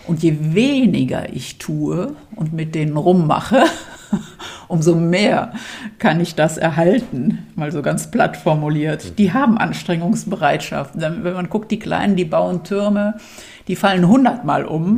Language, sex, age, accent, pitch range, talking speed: German, female, 60-79, German, 155-195 Hz, 140 wpm